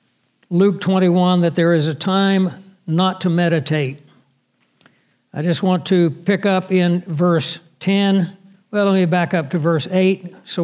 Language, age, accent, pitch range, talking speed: English, 60-79, American, 175-195 Hz, 160 wpm